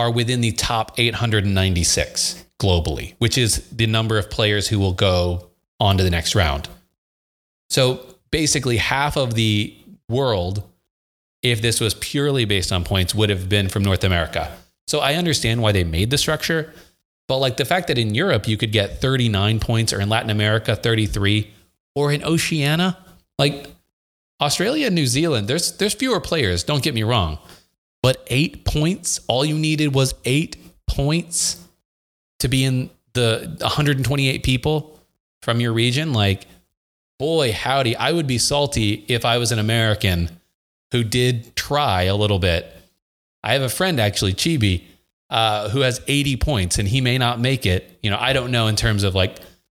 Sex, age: male, 30-49